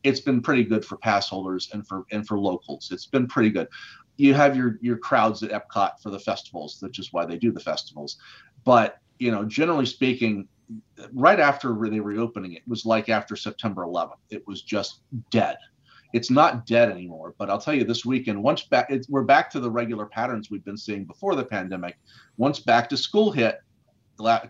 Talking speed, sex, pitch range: 205 wpm, male, 105-130 Hz